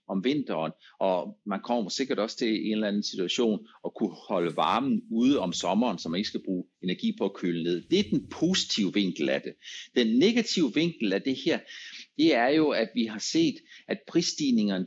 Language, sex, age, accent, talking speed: Danish, male, 60-79, native, 205 wpm